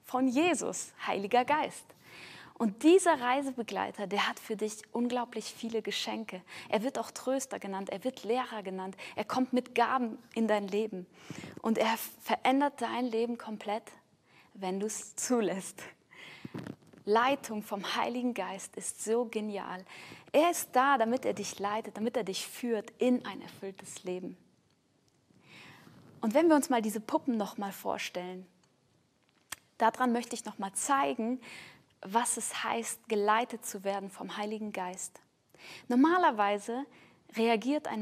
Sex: female